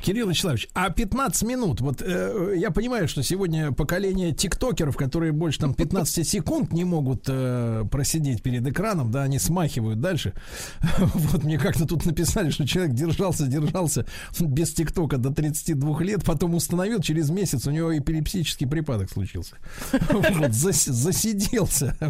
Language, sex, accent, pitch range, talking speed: Russian, male, native, 135-180 Hz, 140 wpm